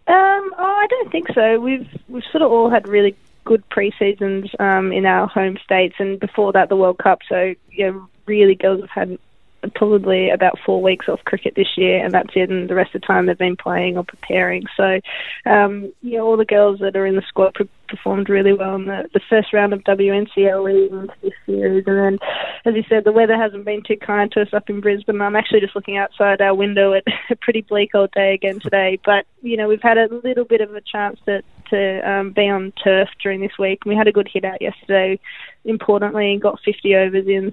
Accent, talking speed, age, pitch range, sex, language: Australian, 235 wpm, 20-39, 195-220 Hz, female, English